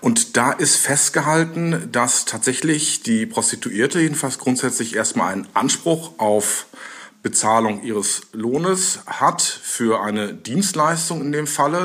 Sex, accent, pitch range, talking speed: male, German, 115-155 Hz, 120 wpm